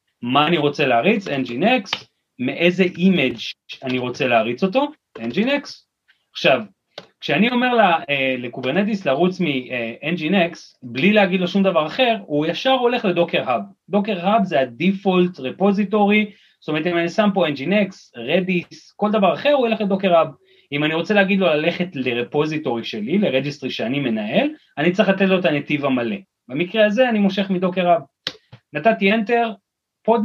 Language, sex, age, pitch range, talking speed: Hebrew, male, 30-49, 145-205 Hz, 140 wpm